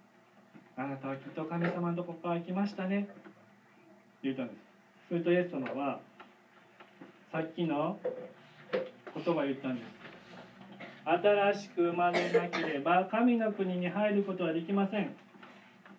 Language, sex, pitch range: Japanese, male, 170-205 Hz